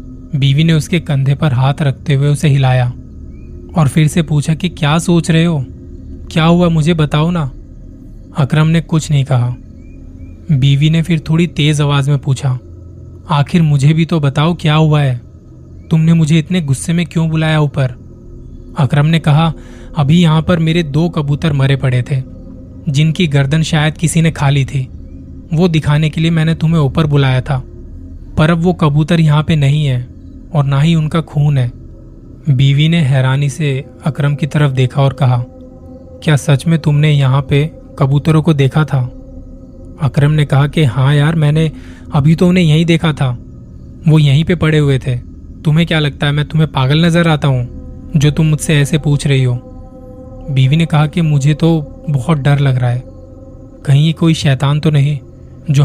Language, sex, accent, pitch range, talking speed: Hindi, male, native, 130-160 Hz, 180 wpm